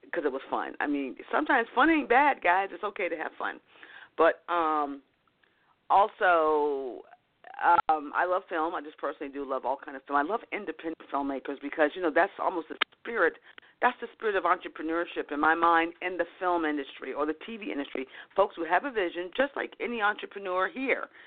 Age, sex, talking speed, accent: 40-59, female, 195 wpm, American